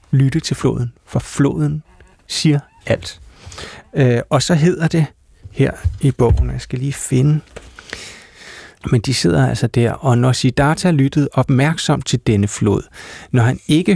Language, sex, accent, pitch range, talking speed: Danish, male, native, 110-145 Hz, 145 wpm